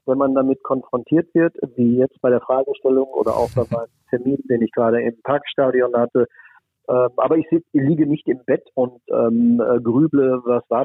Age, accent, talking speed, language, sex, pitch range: 40-59, German, 190 wpm, German, male, 120-145 Hz